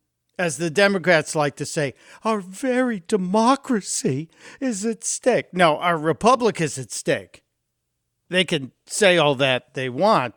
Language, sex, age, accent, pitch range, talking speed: English, male, 50-69, American, 150-180 Hz, 145 wpm